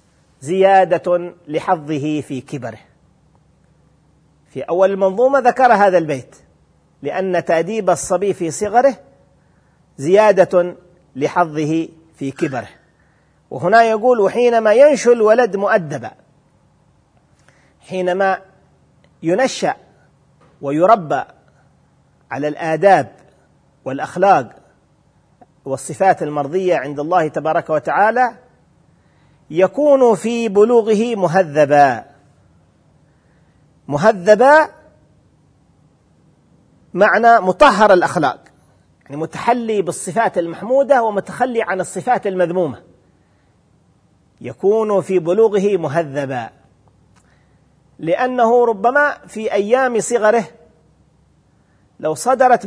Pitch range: 155-225 Hz